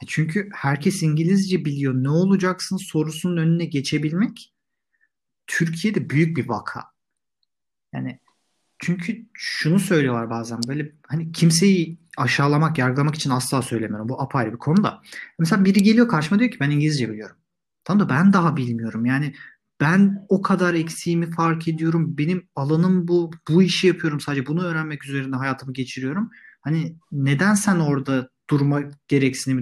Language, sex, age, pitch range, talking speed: Turkish, male, 40-59, 135-175 Hz, 140 wpm